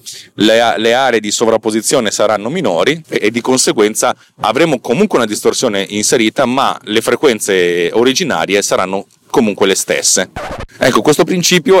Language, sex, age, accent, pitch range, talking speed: Italian, male, 30-49, native, 105-130 Hz, 135 wpm